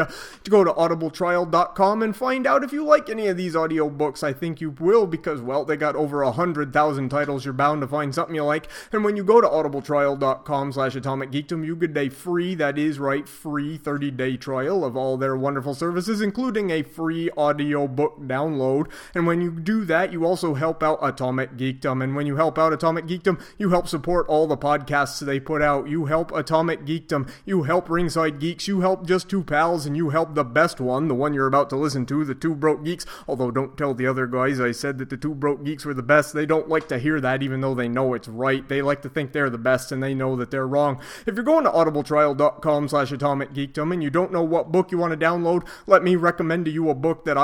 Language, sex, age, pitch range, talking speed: English, male, 30-49, 140-165 Hz, 230 wpm